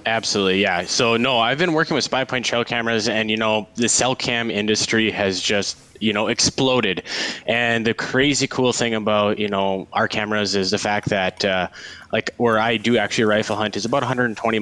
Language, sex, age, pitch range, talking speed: English, male, 20-39, 100-120 Hz, 200 wpm